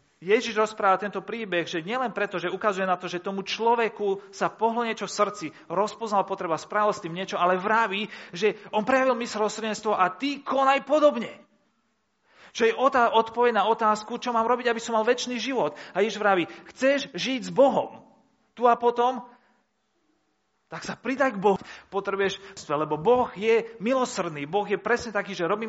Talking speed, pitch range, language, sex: 175 wpm, 155-225 Hz, Slovak, male